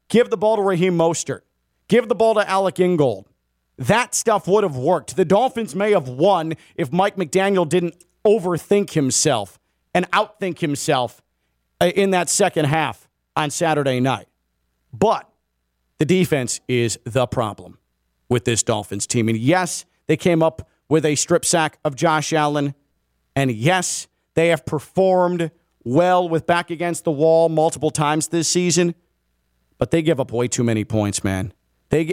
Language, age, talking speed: English, 40-59, 160 wpm